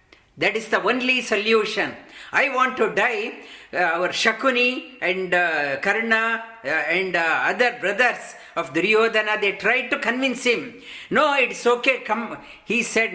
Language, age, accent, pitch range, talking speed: English, 50-69, Indian, 195-255 Hz, 150 wpm